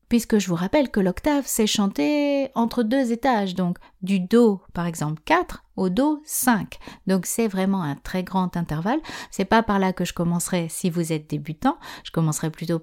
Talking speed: 195 wpm